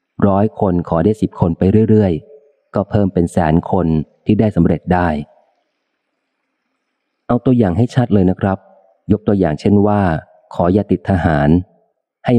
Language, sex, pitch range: Thai, male, 85-105 Hz